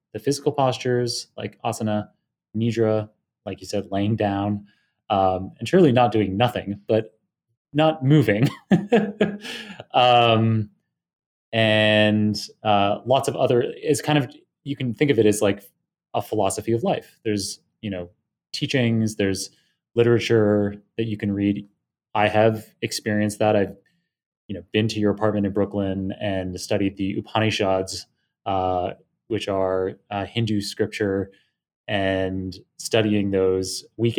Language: English